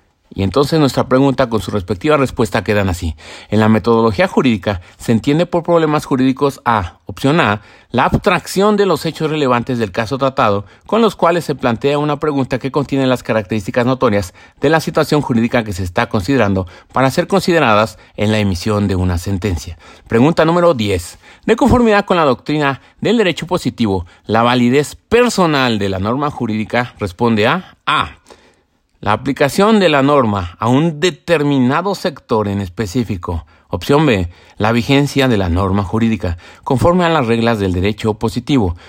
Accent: Mexican